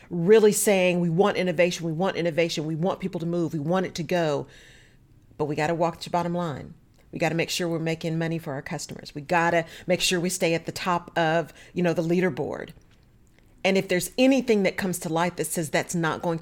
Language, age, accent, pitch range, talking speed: English, 40-59, American, 160-210 Hz, 230 wpm